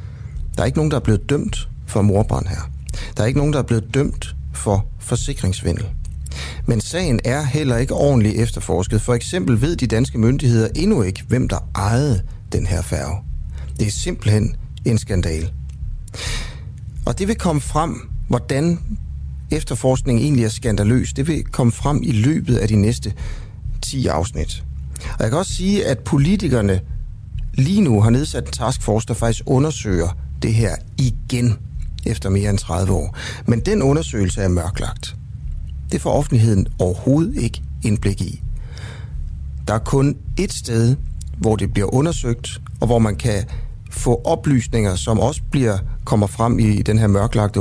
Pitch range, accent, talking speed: 95-125 Hz, native, 160 wpm